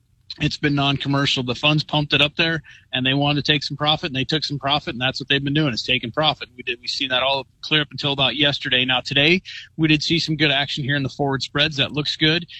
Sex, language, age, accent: male, English, 30-49, American